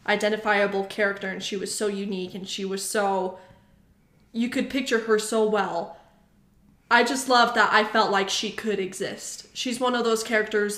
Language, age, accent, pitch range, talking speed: English, 20-39, American, 200-230 Hz, 180 wpm